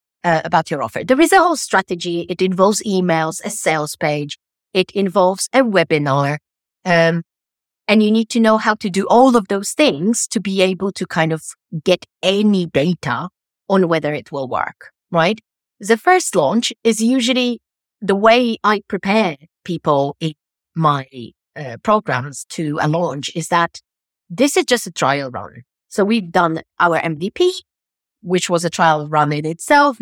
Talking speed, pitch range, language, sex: 170 wpm, 165-230 Hz, English, female